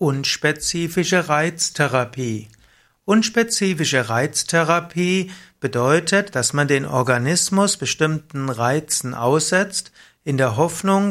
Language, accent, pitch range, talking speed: German, German, 135-170 Hz, 80 wpm